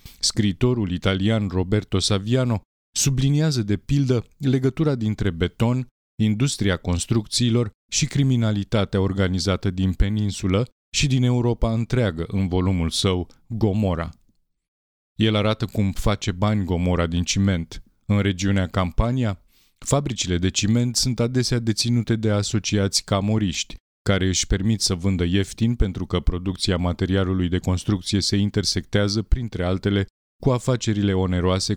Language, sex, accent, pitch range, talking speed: Romanian, male, native, 95-115 Hz, 120 wpm